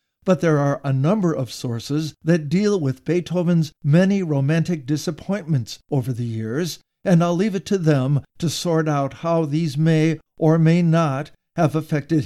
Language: English